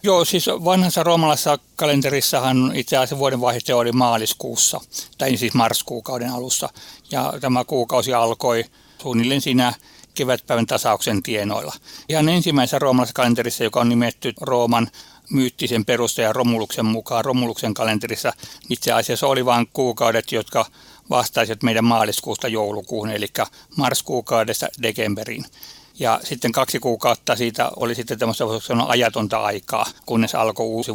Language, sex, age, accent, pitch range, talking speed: Finnish, male, 60-79, native, 115-135 Hz, 125 wpm